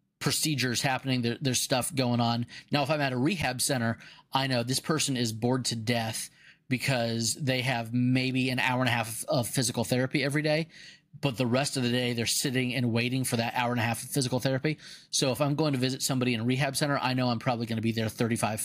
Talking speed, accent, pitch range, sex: 240 wpm, American, 120-140 Hz, male